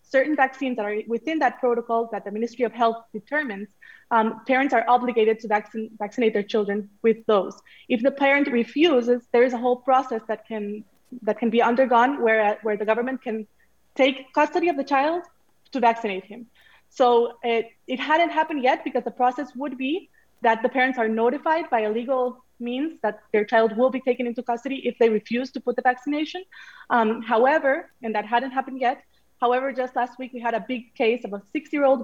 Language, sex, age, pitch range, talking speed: English, female, 20-39, 220-260 Hz, 200 wpm